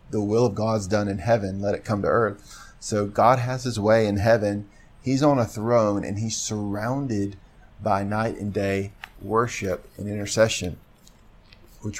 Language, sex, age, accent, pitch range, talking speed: English, male, 40-59, American, 100-120 Hz, 170 wpm